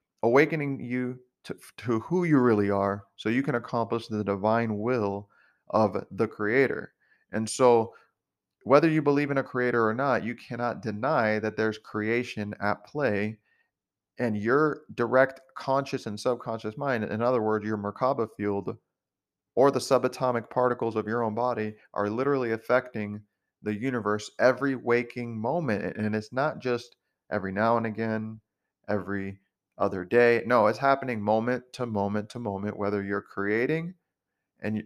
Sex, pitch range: male, 105-130 Hz